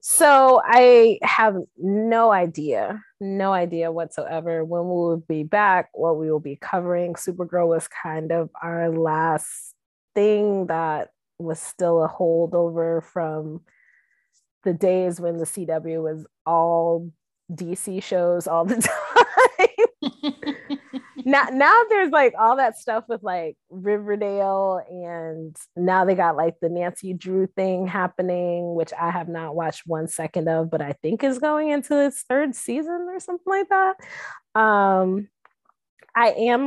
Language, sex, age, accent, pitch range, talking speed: English, female, 20-39, American, 170-245 Hz, 140 wpm